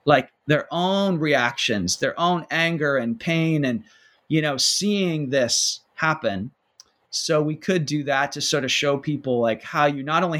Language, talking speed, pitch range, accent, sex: English, 175 wpm, 130-160 Hz, American, male